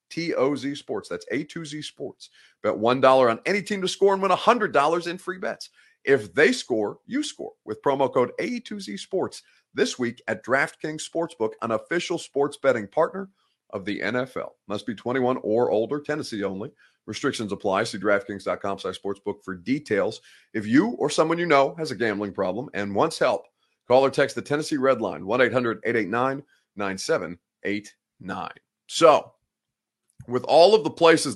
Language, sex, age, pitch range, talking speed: English, male, 30-49, 105-165 Hz, 155 wpm